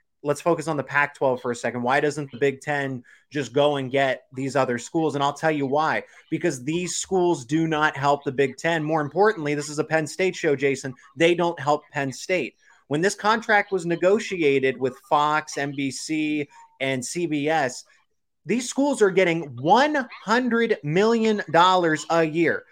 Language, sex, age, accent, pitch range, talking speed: English, male, 30-49, American, 130-170 Hz, 175 wpm